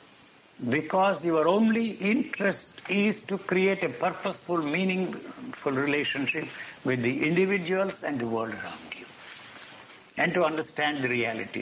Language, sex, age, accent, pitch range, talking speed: English, male, 60-79, Indian, 125-190 Hz, 125 wpm